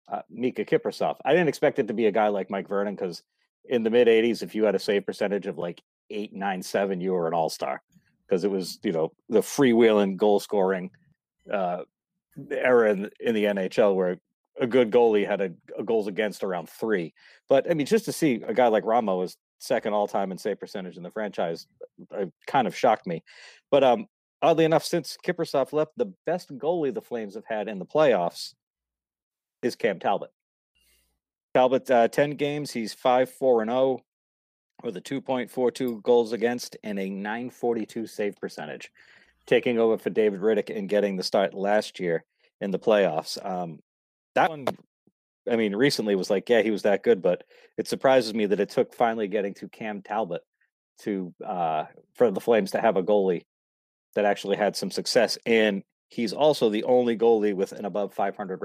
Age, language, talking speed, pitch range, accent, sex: 40-59, English, 185 wpm, 95-130 Hz, American, male